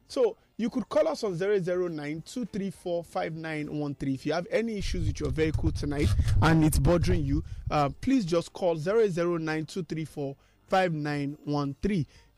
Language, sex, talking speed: English, male, 120 wpm